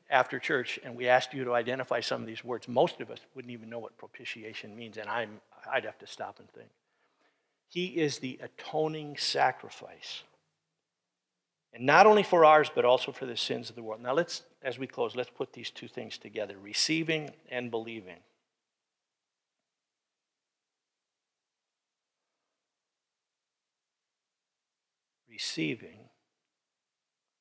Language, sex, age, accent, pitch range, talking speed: English, male, 50-69, American, 120-155 Hz, 135 wpm